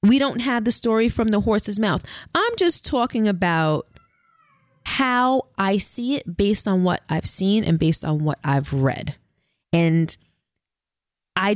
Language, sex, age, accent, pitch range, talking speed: English, female, 20-39, American, 185-290 Hz, 155 wpm